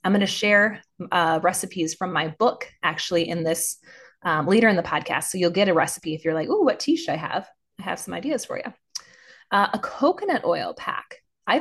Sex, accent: female, American